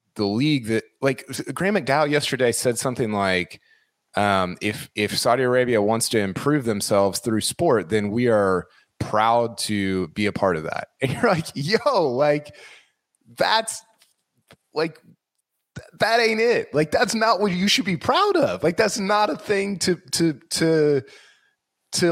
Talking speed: 160 wpm